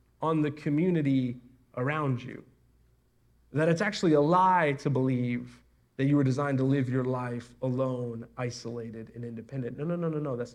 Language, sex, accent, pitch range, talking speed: English, male, American, 130-195 Hz, 170 wpm